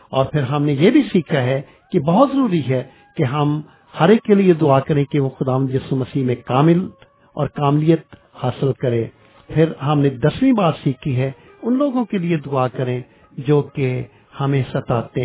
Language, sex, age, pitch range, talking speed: English, male, 50-69, 120-150 Hz, 185 wpm